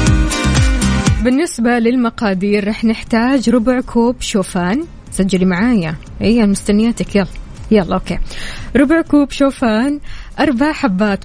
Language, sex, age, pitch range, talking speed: Arabic, female, 20-39, 195-265 Hz, 95 wpm